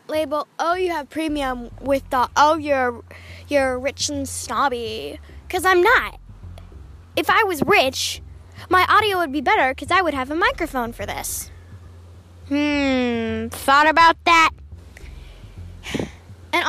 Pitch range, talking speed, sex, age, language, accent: 210-305 Hz, 135 wpm, female, 10-29, English, American